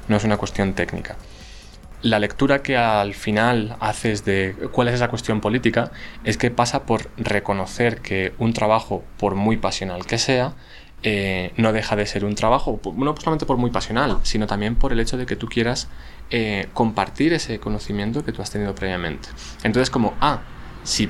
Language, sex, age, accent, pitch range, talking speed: Spanish, male, 20-39, Spanish, 95-120 Hz, 180 wpm